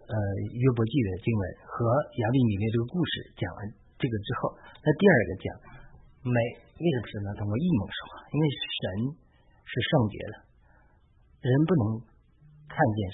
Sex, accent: male, native